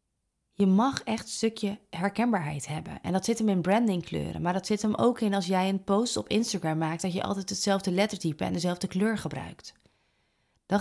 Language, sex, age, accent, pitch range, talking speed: Dutch, female, 30-49, Dutch, 175-220 Hz, 200 wpm